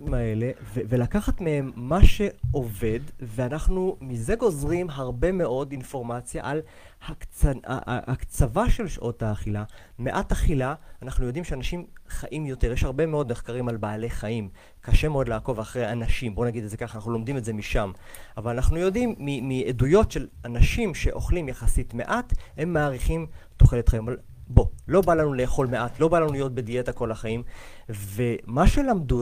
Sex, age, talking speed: male, 30-49, 155 wpm